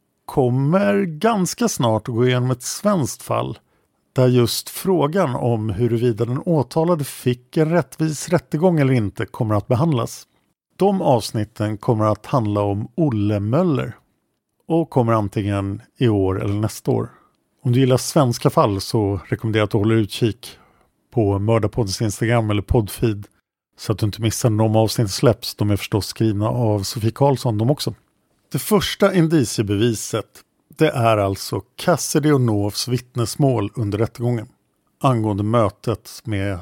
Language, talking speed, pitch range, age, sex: Swedish, 145 wpm, 110-145 Hz, 50-69, male